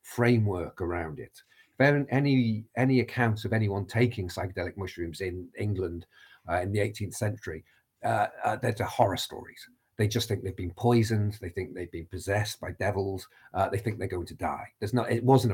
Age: 50-69